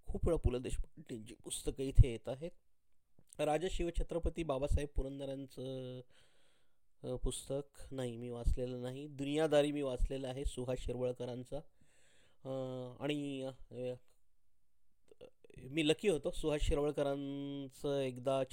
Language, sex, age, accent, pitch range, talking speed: Hindi, male, 20-39, native, 125-145 Hz, 95 wpm